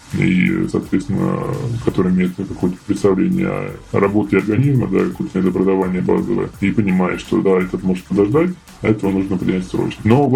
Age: 20-39